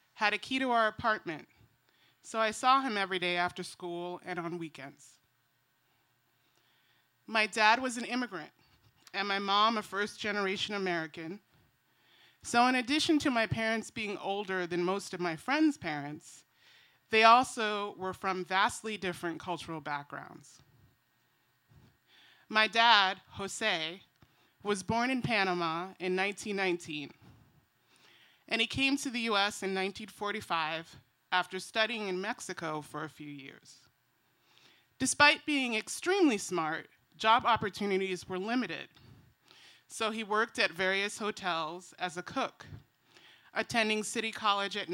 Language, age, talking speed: English, 30-49, 130 wpm